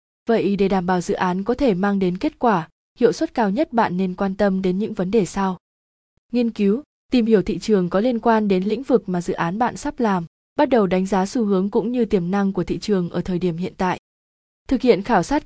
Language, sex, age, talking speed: Vietnamese, female, 20-39, 250 wpm